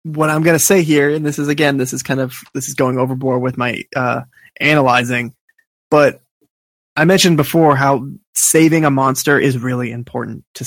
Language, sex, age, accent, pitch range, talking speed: English, male, 20-39, American, 125-145 Hz, 190 wpm